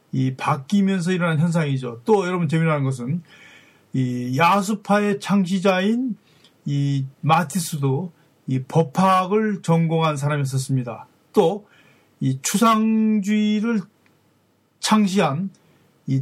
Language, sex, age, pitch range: Korean, male, 40-59, 140-185 Hz